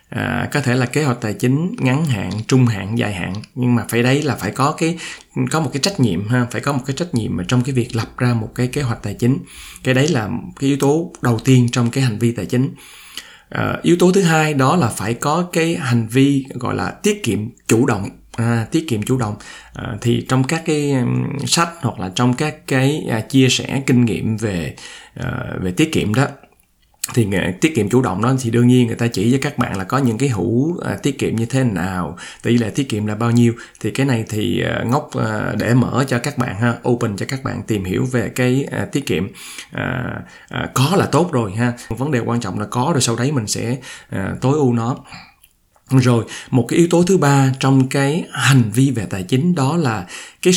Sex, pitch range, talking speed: male, 115-140 Hz, 225 wpm